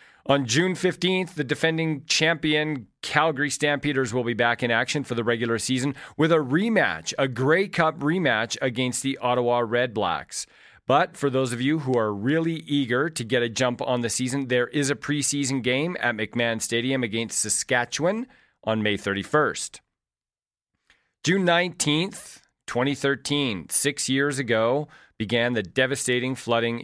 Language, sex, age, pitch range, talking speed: English, male, 40-59, 120-145 Hz, 150 wpm